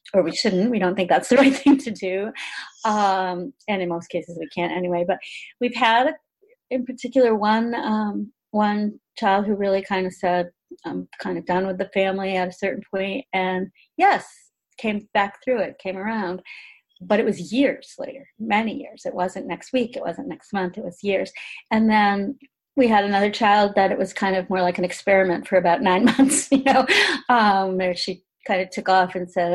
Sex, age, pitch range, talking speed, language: female, 40-59, 180-225 Hz, 205 wpm, English